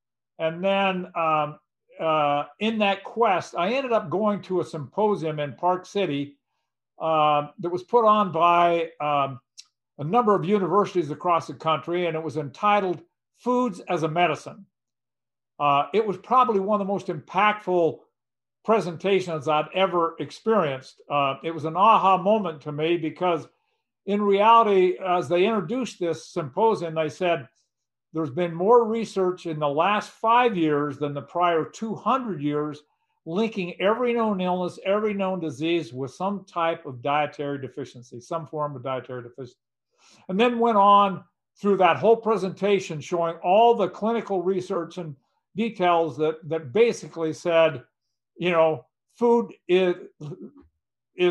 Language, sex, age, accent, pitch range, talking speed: English, male, 60-79, American, 155-200 Hz, 145 wpm